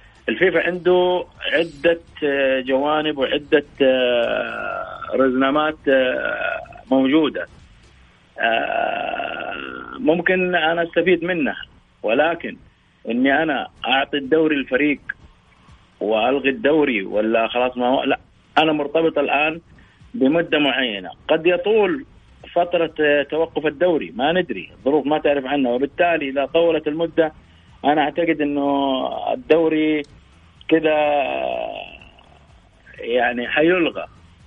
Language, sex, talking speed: Arabic, male, 85 wpm